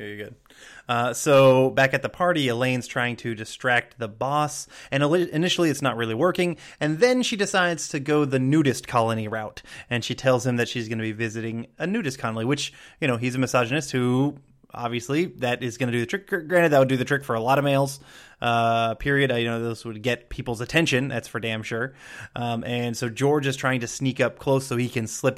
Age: 20-39